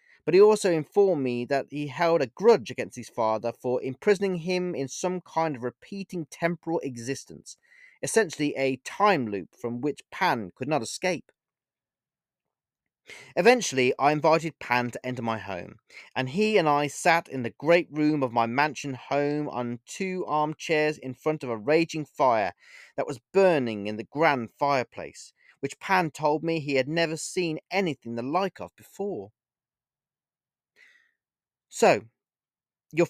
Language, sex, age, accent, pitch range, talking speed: English, male, 30-49, British, 125-180 Hz, 155 wpm